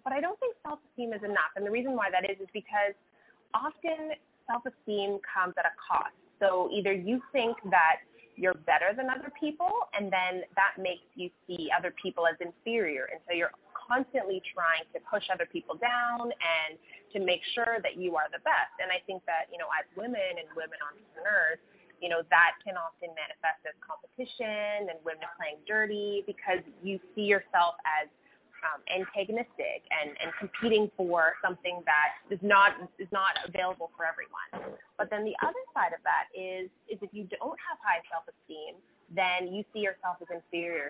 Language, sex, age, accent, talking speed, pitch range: English, female, 20-39, American, 180 wpm, 175-230 Hz